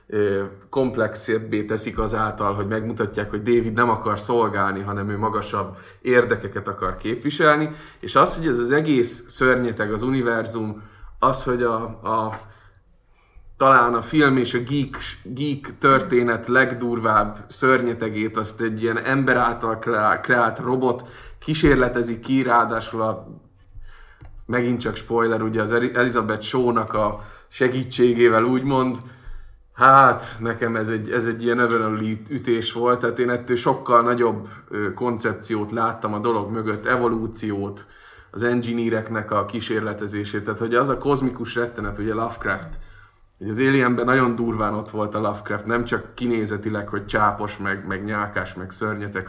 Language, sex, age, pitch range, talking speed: Hungarian, male, 20-39, 105-120 Hz, 135 wpm